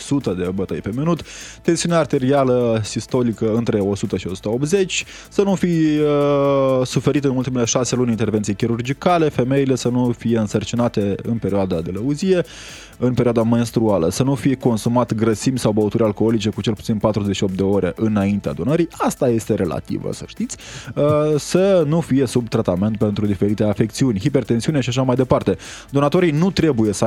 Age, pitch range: 20-39, 105-130 Hz